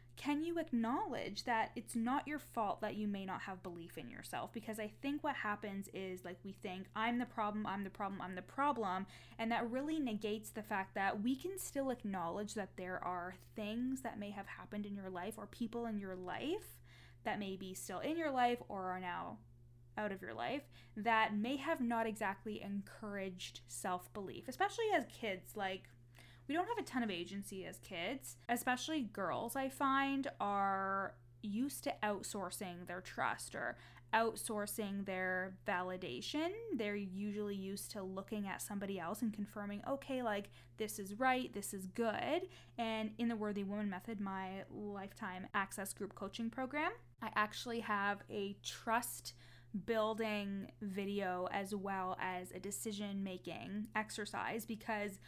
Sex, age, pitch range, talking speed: female, 10-29, 190-230 Hz, 165 wpm